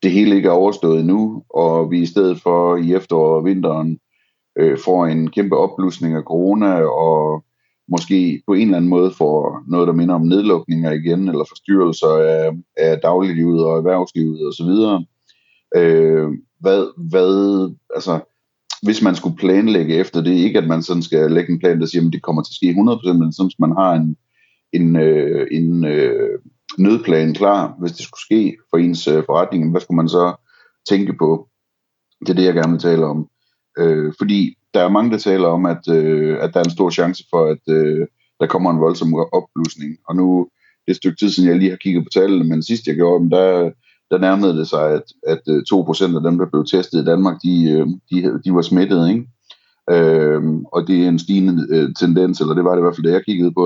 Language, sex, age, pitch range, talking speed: Danish, male, 30-49, 80-95 Hz, 205 wpm